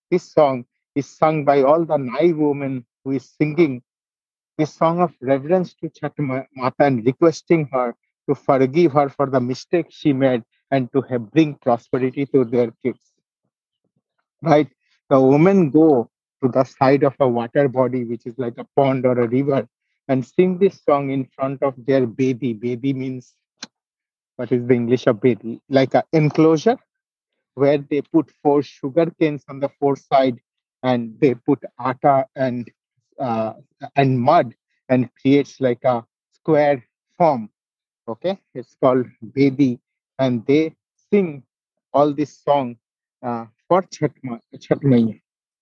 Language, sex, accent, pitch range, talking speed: English, male, Indian, 125-150 Hz, 150 wpm